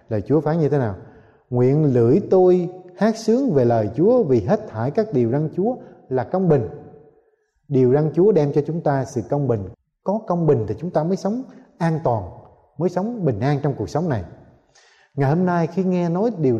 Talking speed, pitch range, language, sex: 215 wpm, 125-180 Hz, Vietnamese, male